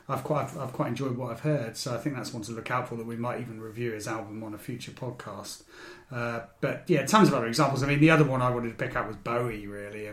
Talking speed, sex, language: 295 wpm, male, English